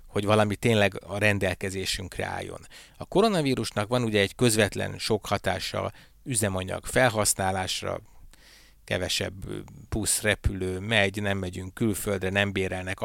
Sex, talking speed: male, 110 wpm